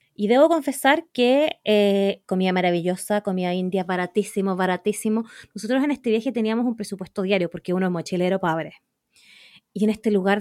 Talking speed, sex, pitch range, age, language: 160 wpm, female, 205-255 Hz, 20-39, Spanish